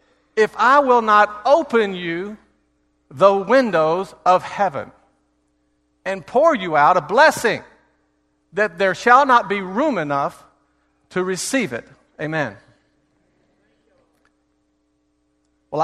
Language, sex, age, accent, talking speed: English, male, 50-69, American, 105 wpm